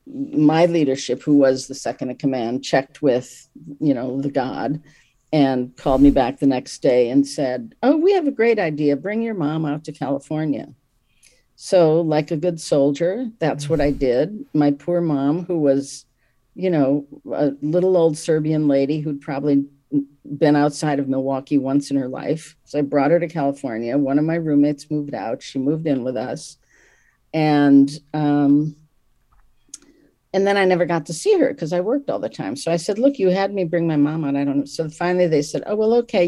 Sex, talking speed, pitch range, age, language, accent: female, 200 wpm, 140-170 Hz, 50-69, English, American